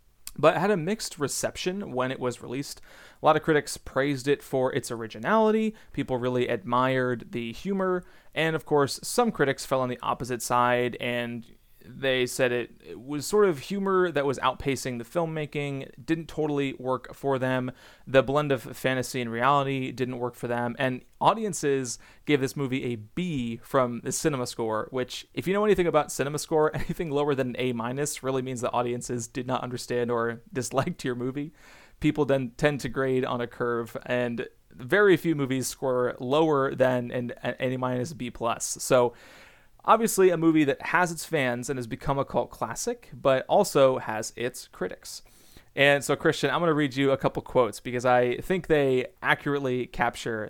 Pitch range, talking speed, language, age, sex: 125-150 Hz, 180 wpm, English, 30-49, male